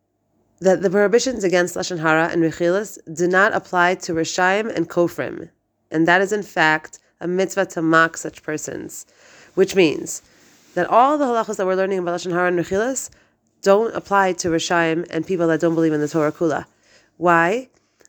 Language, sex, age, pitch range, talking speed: English, female, 30-49, 160-190 Hz, 180 wpm